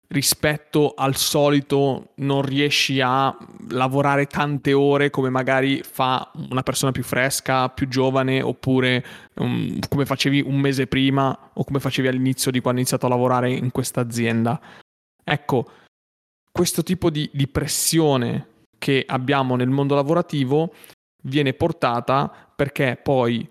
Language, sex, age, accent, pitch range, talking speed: Italian, male, 20-39, native, 130-150 Hz, 135 wpm